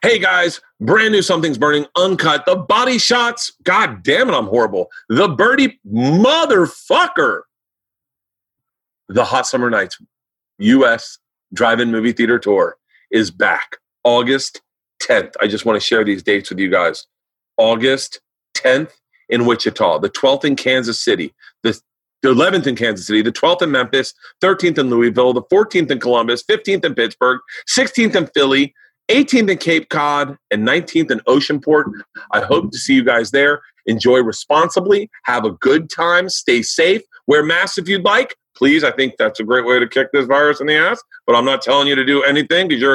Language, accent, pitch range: English, American, 140-185 Hz